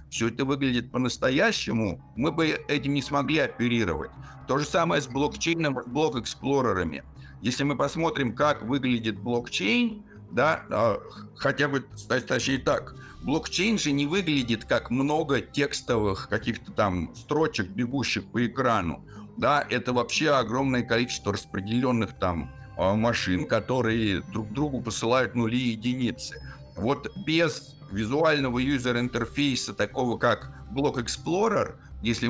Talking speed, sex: 120 wpm, male